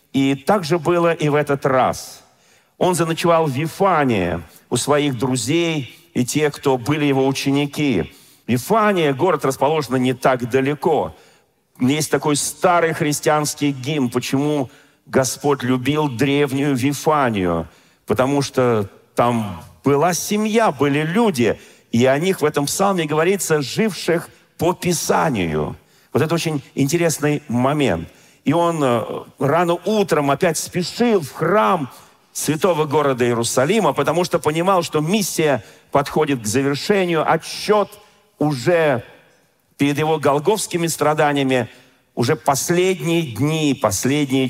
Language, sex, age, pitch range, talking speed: Russian, male, 40-59, 135-170 Hz, 120 wpm